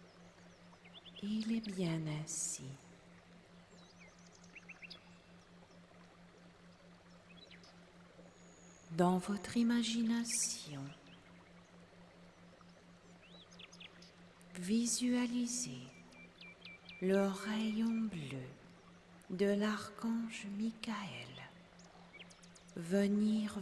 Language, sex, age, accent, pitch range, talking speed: French, female, 40-59, French, 170-210 Hz, 40 wpm